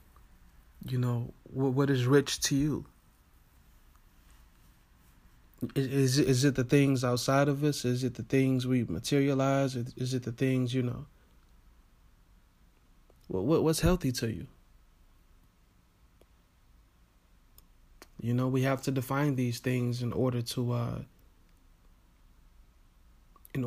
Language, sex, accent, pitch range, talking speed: English, male, American, 95-135 Hz, 115 wpm